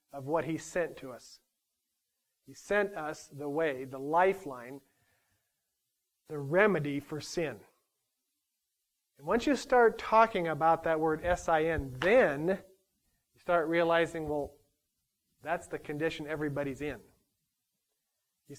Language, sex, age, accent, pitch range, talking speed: English, male, 40-59, American, 145-175 Hz, 120 wpm